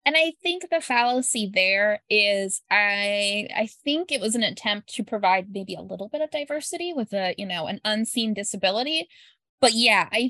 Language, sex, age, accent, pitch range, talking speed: English, female, 20-39, American, 195-245 Hz, 185 wpm